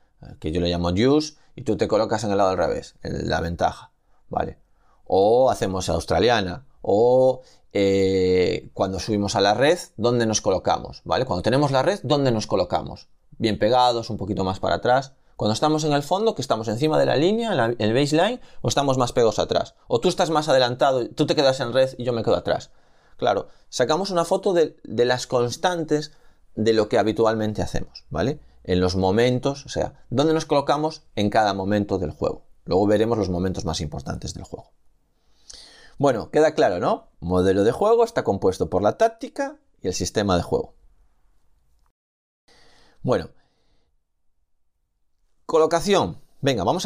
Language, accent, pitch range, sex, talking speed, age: Spanish, Spanish, 95-145 Hz, male, 175 wpm, 30-49